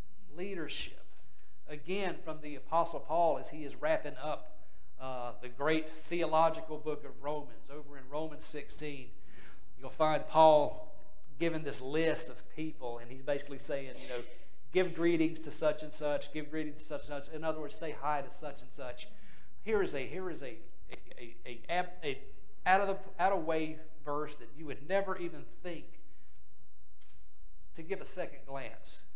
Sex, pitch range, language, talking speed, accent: male, 130-165 Hz, English, 165 wpm, American